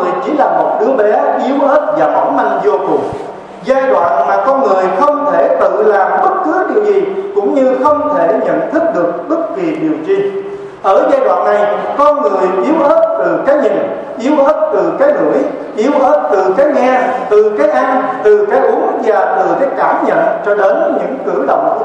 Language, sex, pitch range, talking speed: Vietnamese, male, 195-295 Hz, 205 wpm